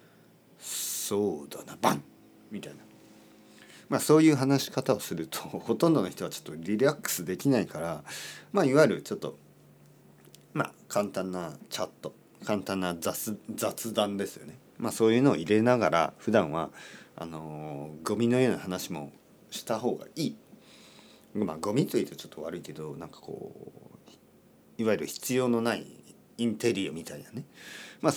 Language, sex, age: Japanese, male, 40-59